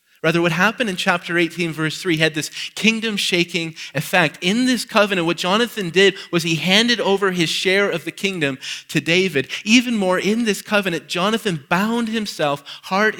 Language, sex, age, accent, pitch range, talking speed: English, male, 30-49, American, 140-185 Hz, 175 wpm